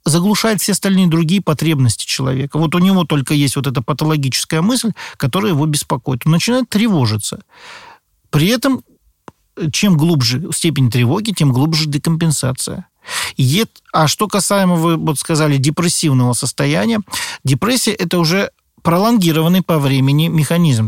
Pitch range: 135-180 Hz